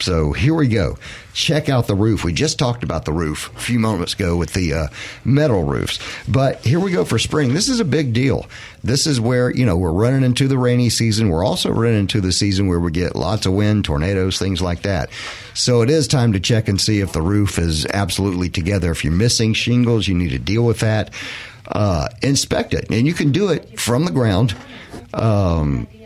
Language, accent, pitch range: English, American, 95-120 Hz